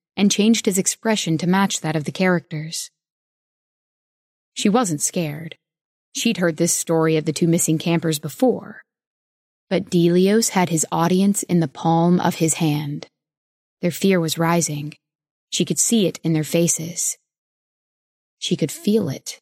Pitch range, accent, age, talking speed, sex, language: 160-200 Hz, American, 20-39, 150 wpm, female, English